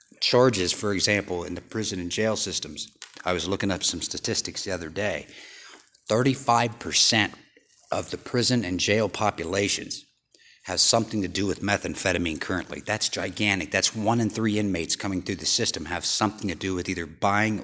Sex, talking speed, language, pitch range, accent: male, 170 wpm, English, 95-115 Hz, American